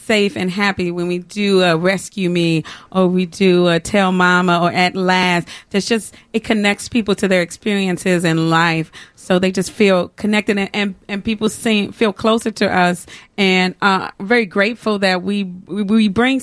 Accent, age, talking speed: American, 40-59, 185 wpm